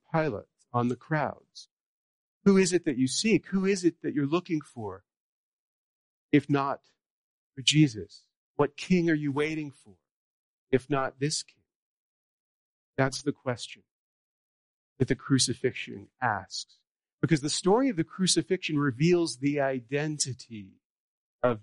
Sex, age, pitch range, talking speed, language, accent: male, 40-59, 120-160 Hz, 135 wpm, English, American